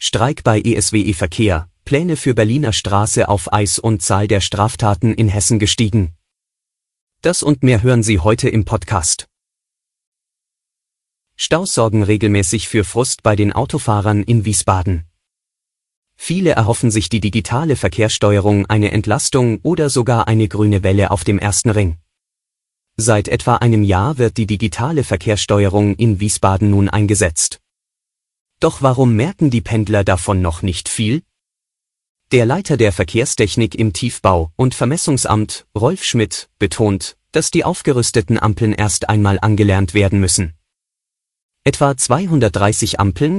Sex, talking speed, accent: male, 135 wpm, German